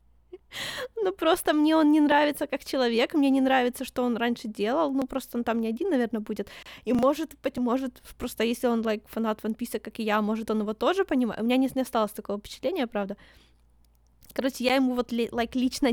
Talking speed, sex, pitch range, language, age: 215 wpm, female, 220-265 Hz, Ukrainian, 20-39